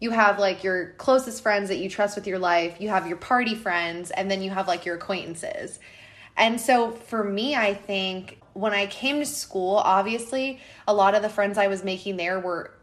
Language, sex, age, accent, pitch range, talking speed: English, female, 20-39, American, 185-250 Hz, 215 wpm